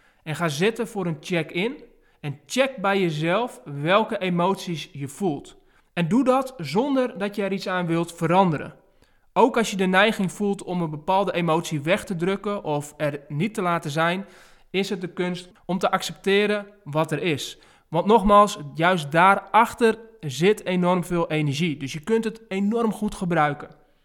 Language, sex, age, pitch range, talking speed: Dutch, male, 20-39, 160-205 Hz, 170 wpm